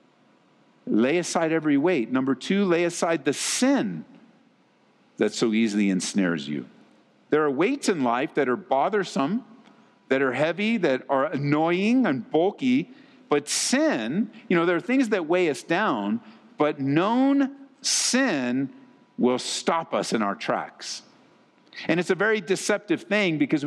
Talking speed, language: 145 wpm, English